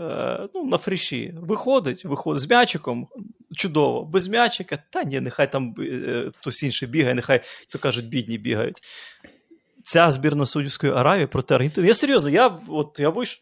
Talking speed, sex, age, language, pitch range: 150 wpm, male, 30-49, Ukrainian, 135-185 Hz